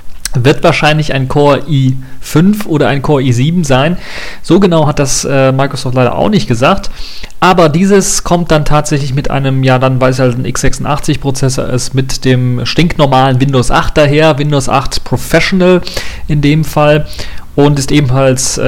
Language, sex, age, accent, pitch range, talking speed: German, male, 40-59, German, 130-155 Hz, 160 wpm